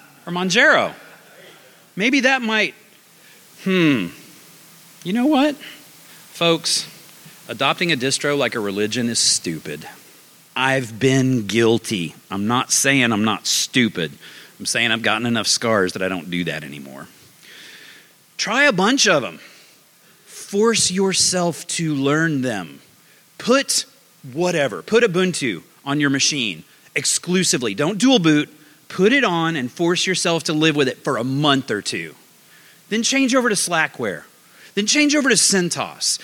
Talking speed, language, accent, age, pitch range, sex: 140 wpm, English, American, 40-59, 130-195 Hz, male